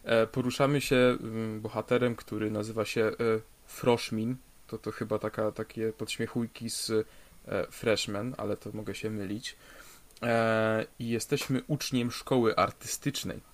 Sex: male